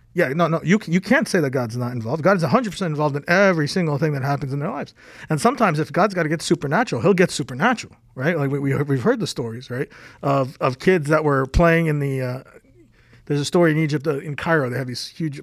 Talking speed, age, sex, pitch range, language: 255 wpm, 40-59, male, 145-180 Hz, English